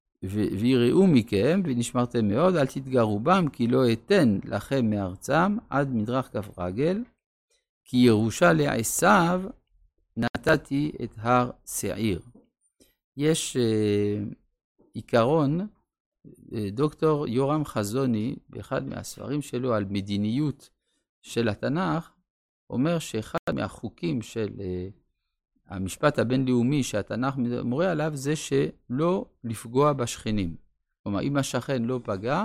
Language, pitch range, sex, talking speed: Hebrew, 105-150 Hz, male, 105 wpm